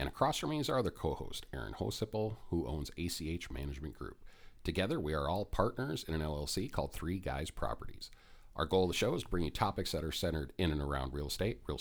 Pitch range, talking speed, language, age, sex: 75-95 Hz, 235 wpm, English, 40-59, male